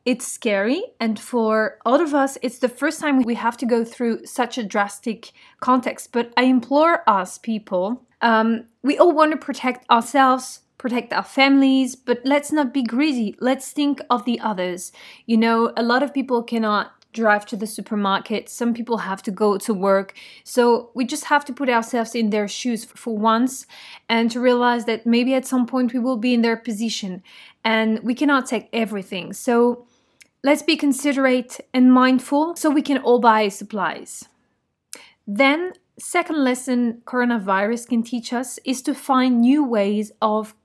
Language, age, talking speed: French, 20-39, 175 wpm